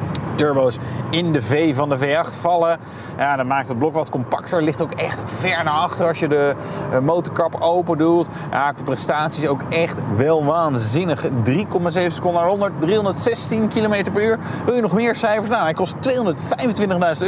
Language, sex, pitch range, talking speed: Dutch, male, 150-195 Hz, 180 wpm